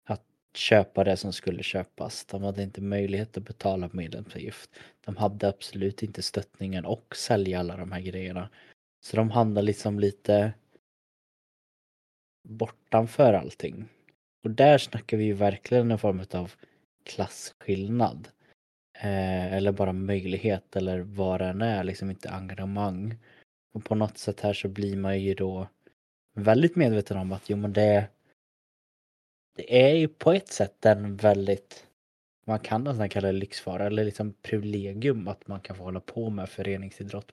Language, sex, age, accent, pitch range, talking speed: Swedish, male, 20-39, native, 95-110 Hz, 150 wpm